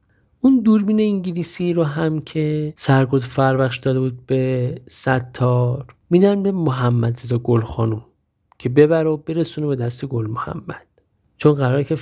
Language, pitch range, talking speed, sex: Persian, 120-160 Hz, 140 wpm, male